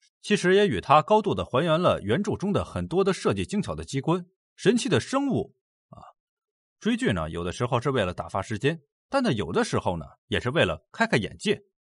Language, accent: Chinese, native